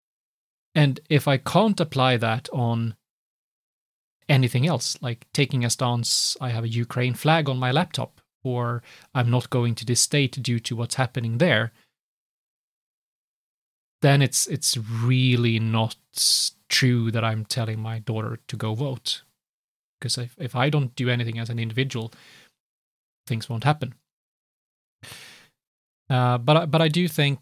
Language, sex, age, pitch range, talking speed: English, male, 30-49, 120-140 Hz, 145 wpm